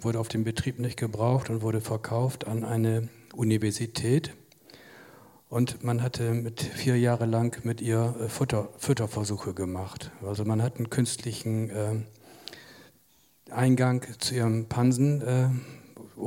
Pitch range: 110-125 Hz